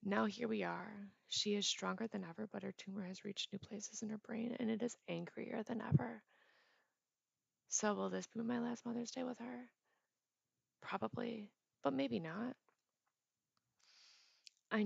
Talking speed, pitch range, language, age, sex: 160 wpm, 180-230 Hz, English, 20-39, female